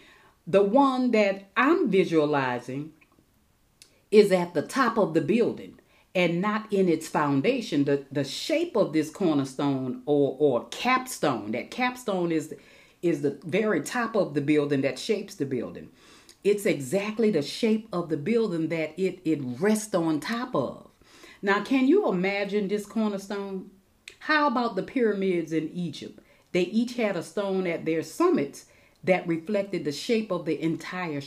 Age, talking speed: 40-59, 155 wpm